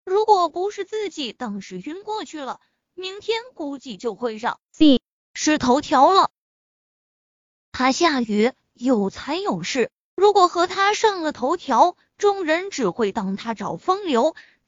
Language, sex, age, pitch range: Chinese, female, 20-39, 235-350 Hz